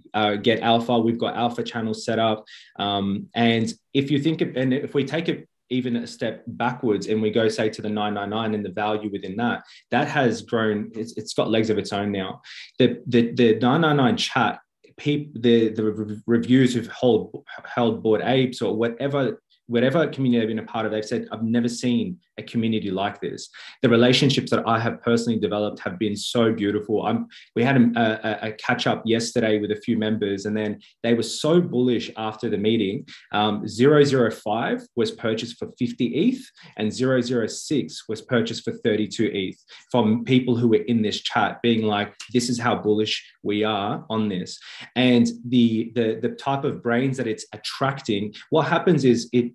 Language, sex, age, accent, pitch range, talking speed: English, male, 20-39, Australian, 110-125 Hz, 190 wpm